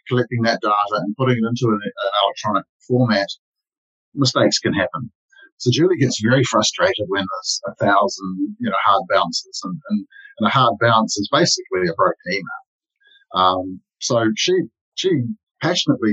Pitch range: 110-170 Hz